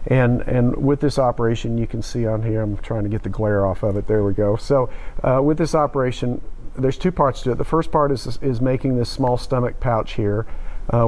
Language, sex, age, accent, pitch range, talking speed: English, male, 50-69, American, 110-130 Hz, 240 wpm